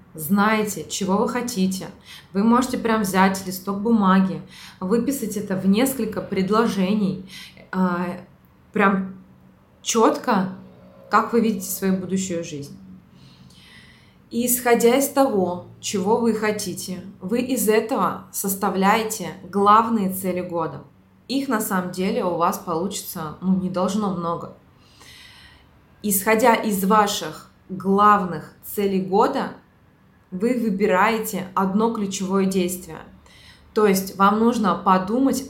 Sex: female